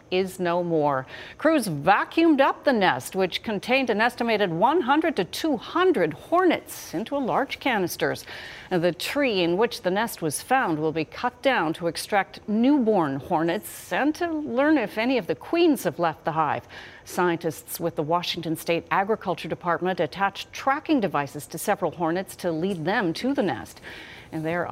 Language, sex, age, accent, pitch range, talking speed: English, female, 40-59, American, 160-220 Hz, 170 wpm